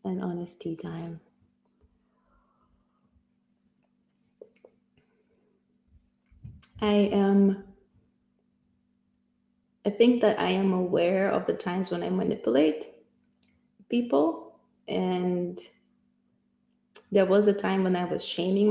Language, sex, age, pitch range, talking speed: English, female, 20-39, 175-225 Hz, 90 wpm